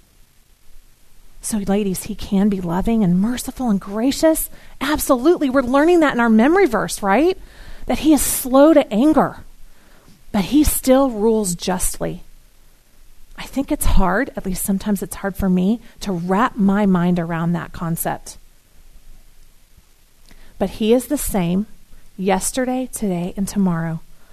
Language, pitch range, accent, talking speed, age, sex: English, 185-265 Hz, American, 140 wpm, 40-59, female